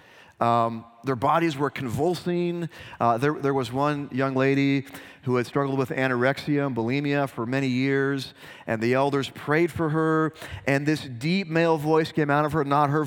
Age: 30-49